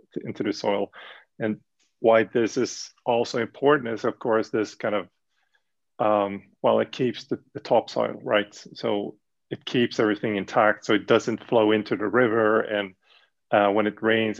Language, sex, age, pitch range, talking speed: English, male, 30-49, 100-115 Hz, 165 wpm